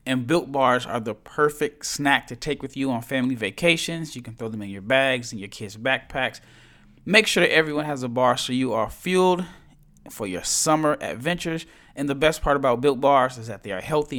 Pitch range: 120-160 Hz